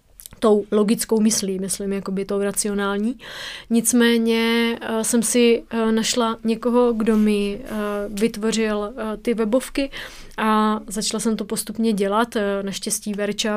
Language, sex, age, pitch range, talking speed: Czech, female, 30-49, 210-230 Hz, 110 wpm